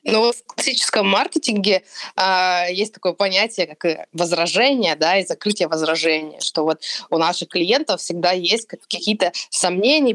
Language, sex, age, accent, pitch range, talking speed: Russian, female, 20-39, native, 180-220 Hz, 135 wpm